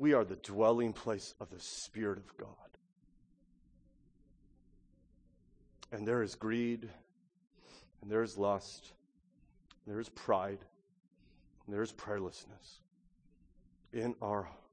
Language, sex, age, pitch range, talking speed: English, male, 40-59, 85-130 Hz, 115 wpm